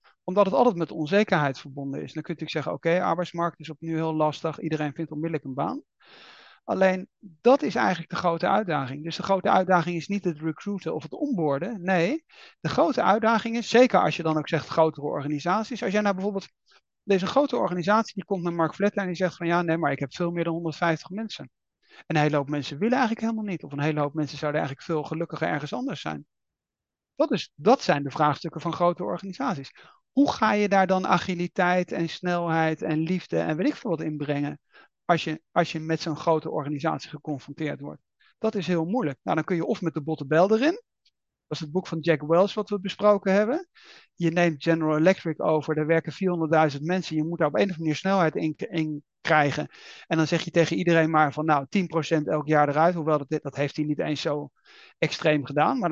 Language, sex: Dutch, male